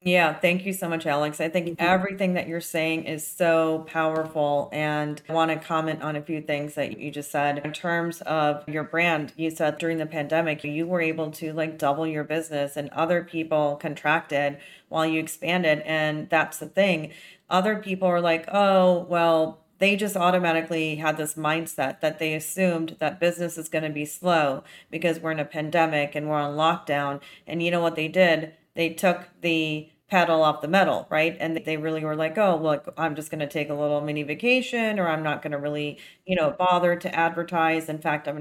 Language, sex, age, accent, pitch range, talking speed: English, female, 30-49, American, 155-175 Hz, 205 wpm